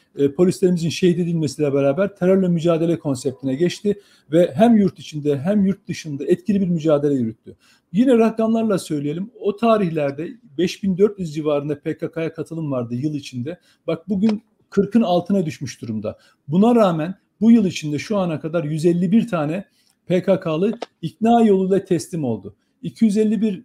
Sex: male